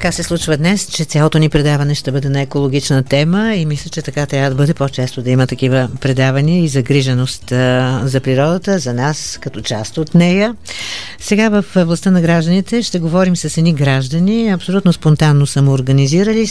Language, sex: Bulgarian, female